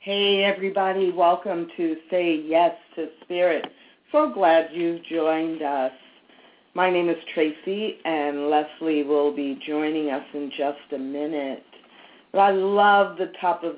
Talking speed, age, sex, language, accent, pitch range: 145 wpm, 50-69, female, English, American, 155-210 Hz